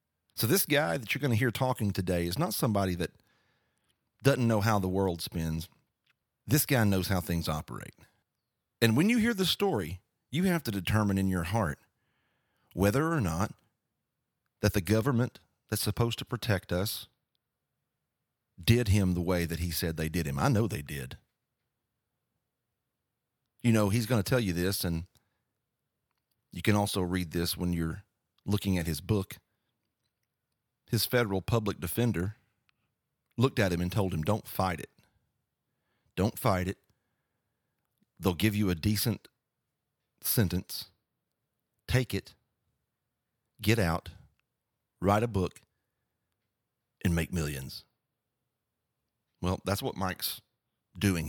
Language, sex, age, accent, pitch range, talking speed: English, male, 40-59, American, 90-120 Hz, 140 wpm